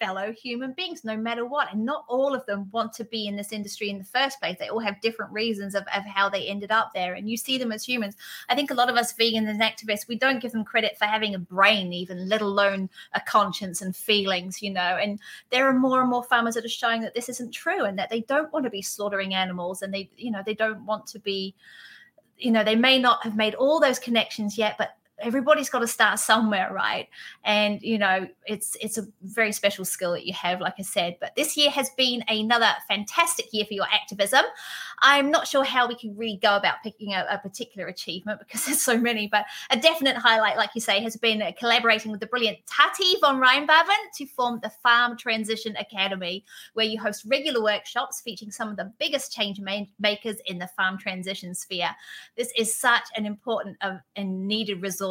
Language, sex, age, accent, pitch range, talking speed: English, female, 30-49, British, 200-245 Hz, 225 wpm